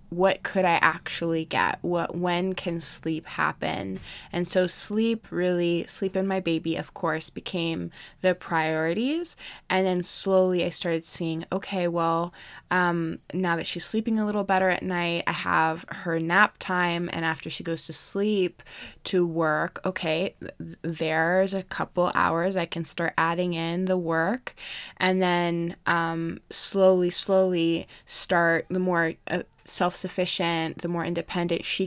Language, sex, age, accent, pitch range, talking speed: English, female, 20-39, American, 165-185 Hz, 155 wpm